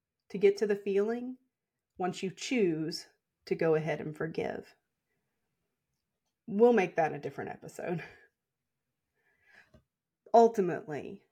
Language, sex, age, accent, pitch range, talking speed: English, female, 30-49, American, 165-215 Hz, 105 wpm